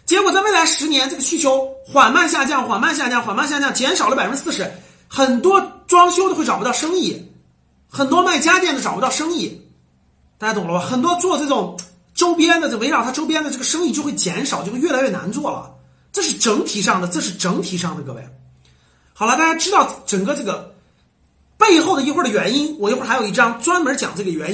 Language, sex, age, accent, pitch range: Chinese, male, 30-49, native, 195-325 Hz